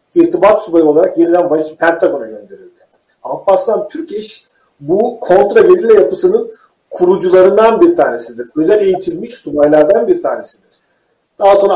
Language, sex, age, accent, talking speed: Turkish, male, 50-69, native, 110 wpm